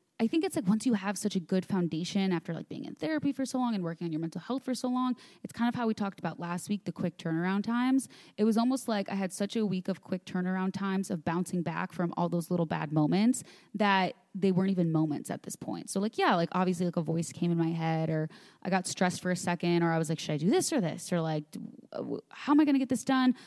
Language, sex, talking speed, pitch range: English, female, 280 wpm, 175-225 Hz